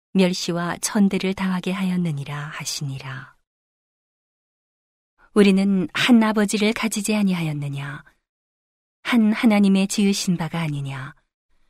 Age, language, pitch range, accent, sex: 40-59, Korean, 170-205 Hz, native, female